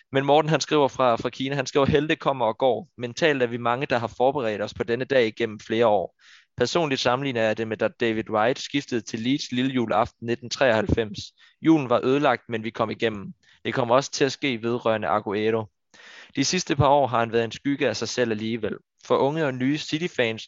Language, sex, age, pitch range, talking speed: Danish, male, 20-39, 110-130 Hz, 215 wpm